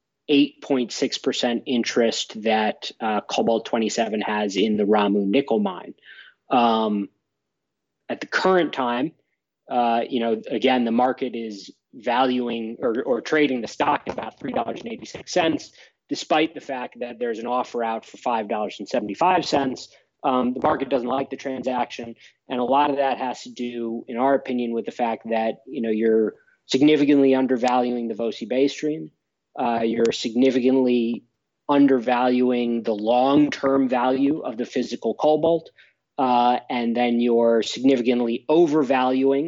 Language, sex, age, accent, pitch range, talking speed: English, male, 20-39, American, 115-135 Hz, 140 wpm